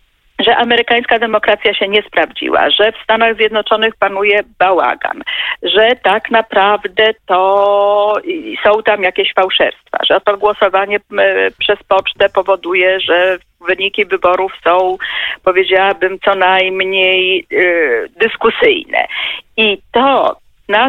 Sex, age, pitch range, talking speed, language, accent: female, 40-59, 185-245 Hz, 105 wpm, Polish, native